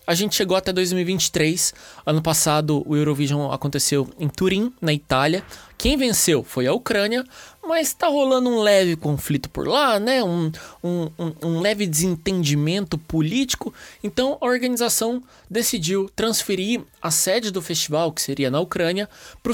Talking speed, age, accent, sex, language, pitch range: 145 wpm, 20-39, Brazilian, male, Portuguese, 150-195 Hz